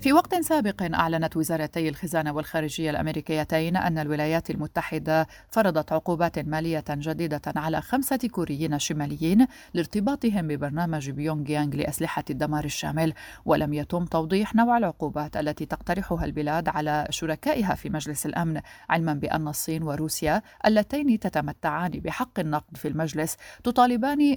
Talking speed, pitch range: 120 wpm, 155-195 Hz